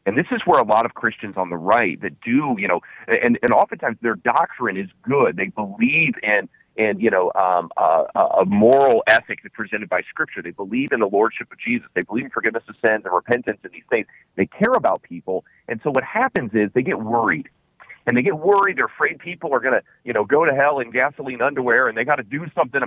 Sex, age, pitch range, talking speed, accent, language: male, 40-59, 105-155 Hz, 240 wpm, American, English